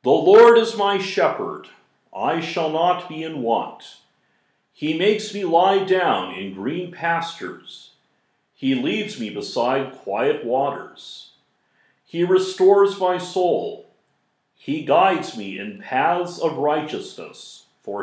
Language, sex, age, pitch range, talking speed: English, male, 50-69, 155-205 Hz, 125 wpm